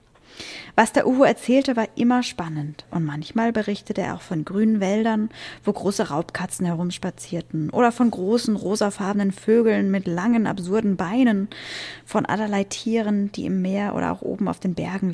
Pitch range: 170-220 Hz